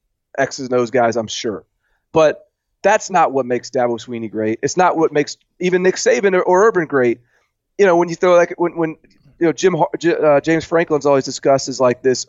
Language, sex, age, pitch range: English, male, 30-49, 125-160 Hz